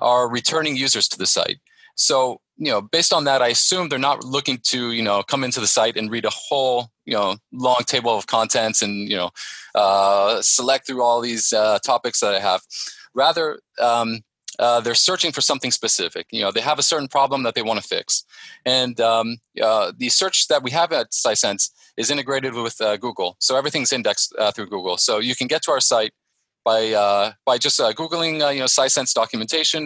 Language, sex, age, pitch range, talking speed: English, male, 30-49, 115-140 Hz, 215 wpm